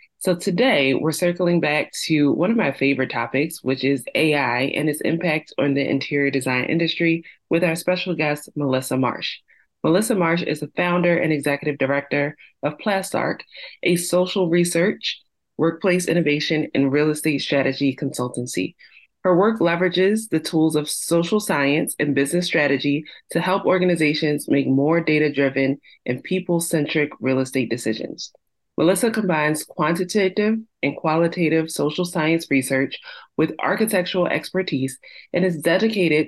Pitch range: 140-175 Hz